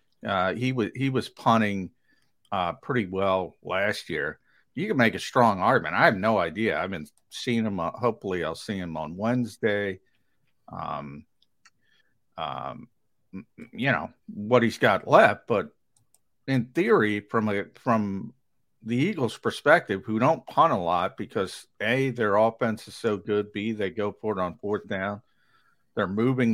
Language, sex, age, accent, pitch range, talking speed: English, male, 50-69, American, 100-125 Hz, 165 wpm